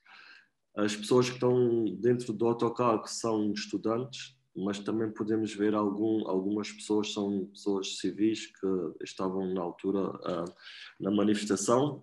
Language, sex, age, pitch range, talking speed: English, male, 20-39, 100-110 Hz, 135 wpm